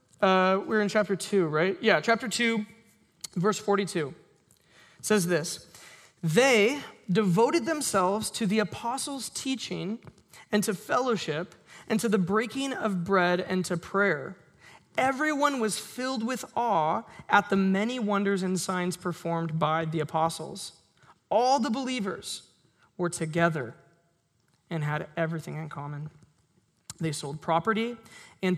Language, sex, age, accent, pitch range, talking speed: English, male, 20-39, American, 170-210 Hz, 130 wpm